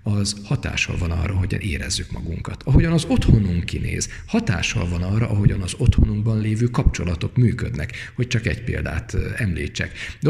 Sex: male